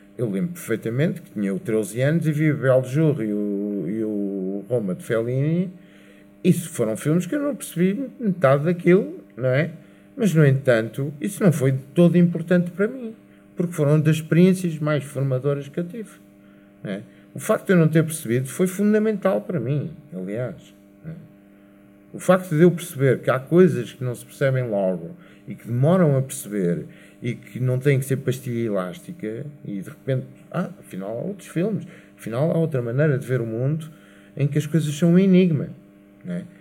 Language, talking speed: Portuguese, 185 wpm